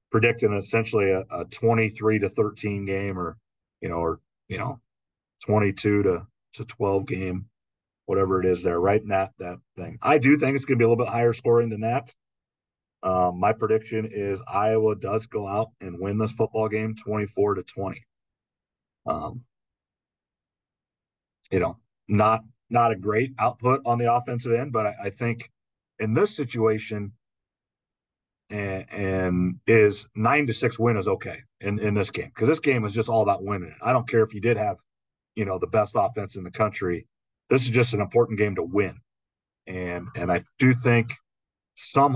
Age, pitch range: 40-59, 100-120 Hz